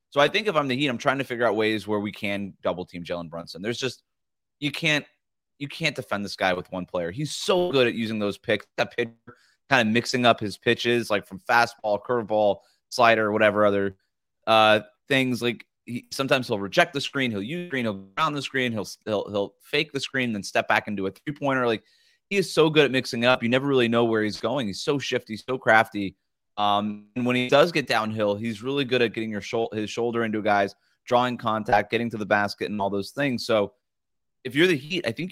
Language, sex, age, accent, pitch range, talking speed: English, male, 30-49, American, 100-130 Hz, 235 wpm